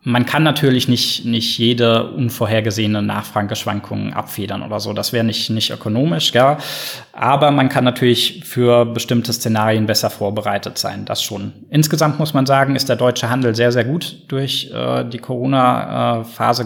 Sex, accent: male, German